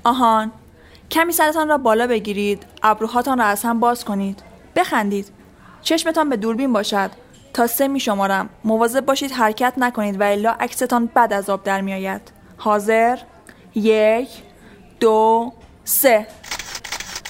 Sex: female